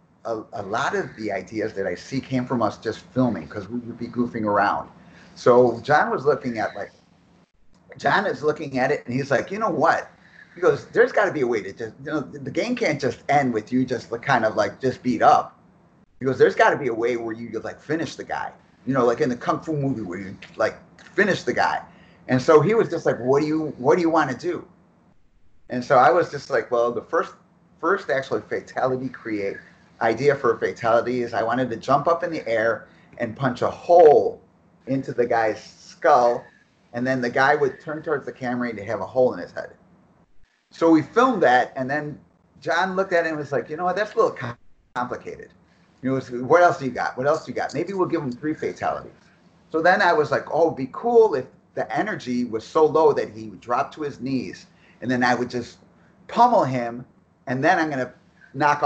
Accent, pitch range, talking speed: American, 120-160 Hz, 235 wpm